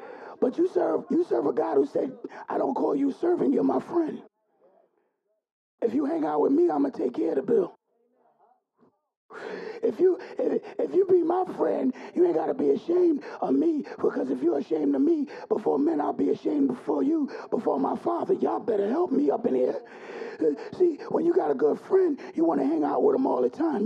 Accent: American